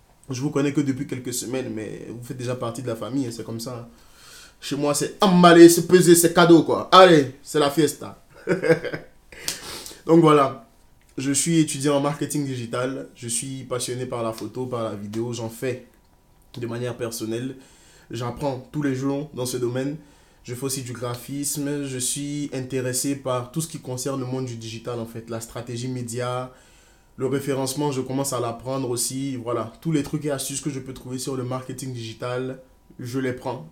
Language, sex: French, male